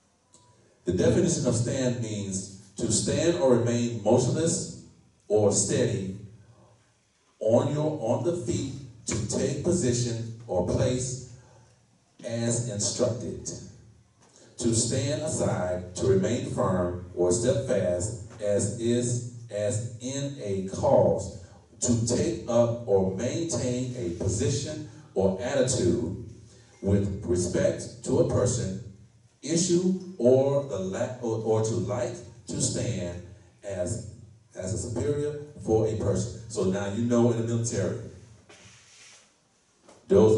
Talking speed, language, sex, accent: 115 wpm, English, male, American